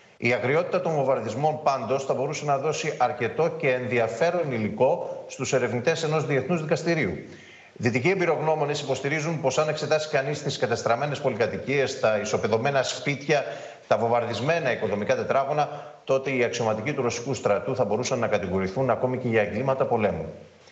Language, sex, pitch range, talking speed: Greek, male, 125-155 Hz, 150 wpm